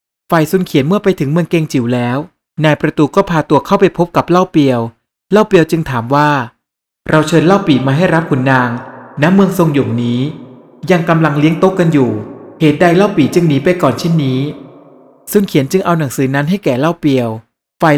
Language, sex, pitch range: Thai, male, 135-180 Hz